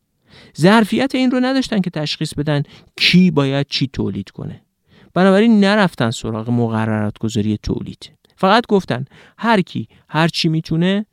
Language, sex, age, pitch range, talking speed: Persian, male, 50-69, 115-170 Hz, 125 wpm